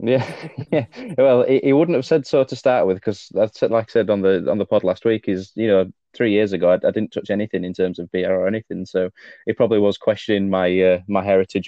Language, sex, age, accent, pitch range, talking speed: English, male, 20-39, British, 90-100 Hz, 245 wpm